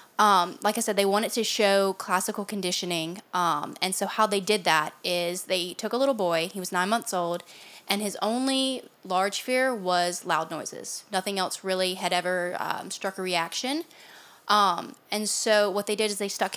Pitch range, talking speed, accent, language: 175-210 Hz, 195 wpm, American, English